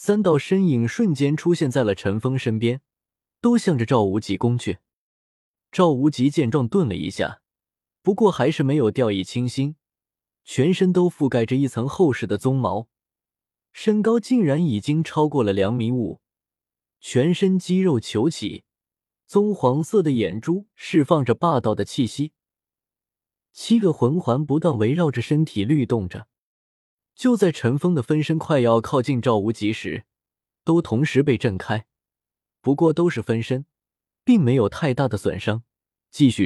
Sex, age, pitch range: male, 20-39, 115-160 Hz